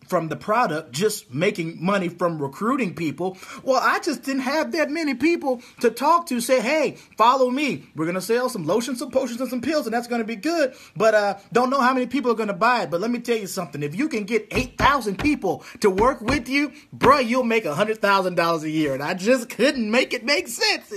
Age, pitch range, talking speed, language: 30-49, 170-255 Hz, 240 wpm, English